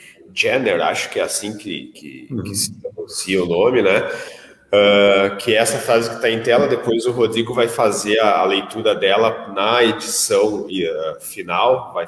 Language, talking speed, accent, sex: Portuguese, 180 wpm, Brazilian, male